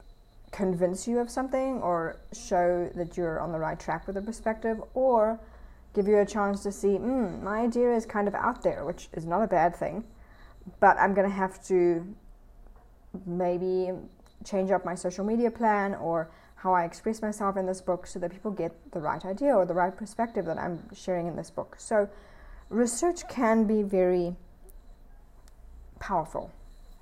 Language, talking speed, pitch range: English, 180 wpm, 180-225 Hz